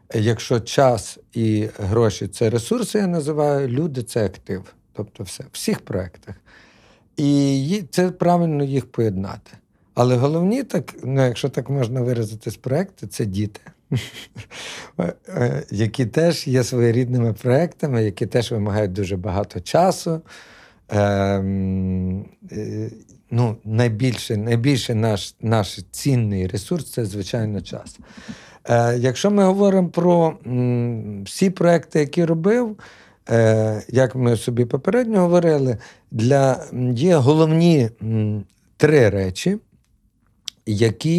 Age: 50-69